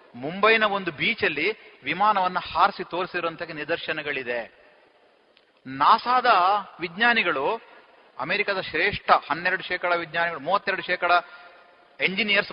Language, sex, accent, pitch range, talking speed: Kannada, male, native, 170-215 Hz, 80 wpm